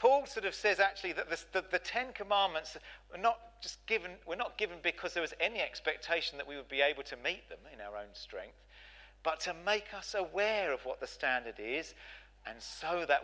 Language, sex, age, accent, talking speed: English, male, 40-59, British, 220 wpm